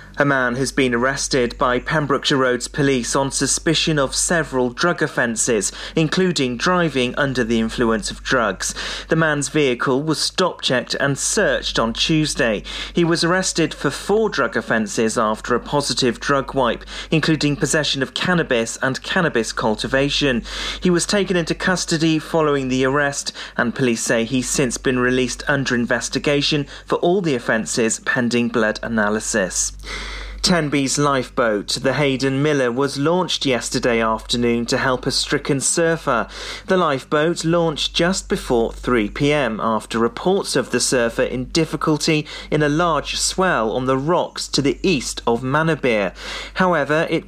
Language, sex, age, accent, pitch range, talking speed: English, male, 30-49, British, 125-160 Hz, 145 wpm